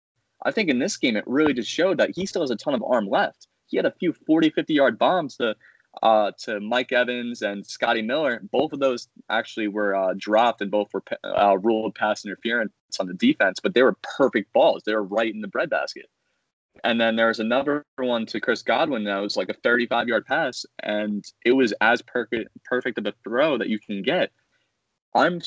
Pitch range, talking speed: 105-120 Hz, 210 wpm